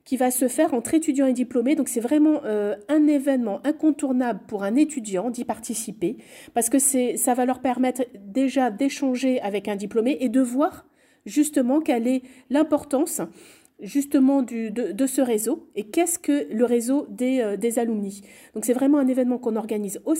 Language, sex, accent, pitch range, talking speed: French, female, French, 225-275 Hz, 185 wpm